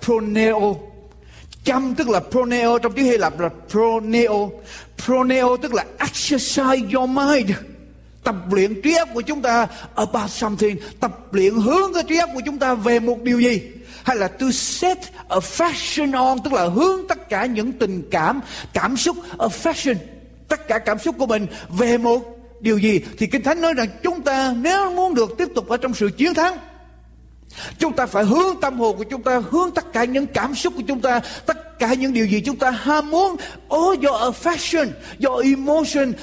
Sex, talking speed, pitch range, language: male, 195 wpm, 215-285 Hz, Vietnamese